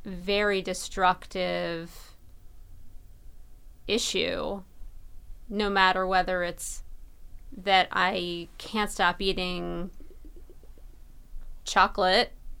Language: English